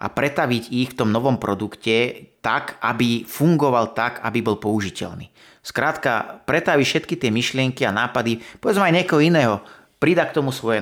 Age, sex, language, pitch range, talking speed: 30-49, male, Slovak, 110-135 Hz, 160 wpm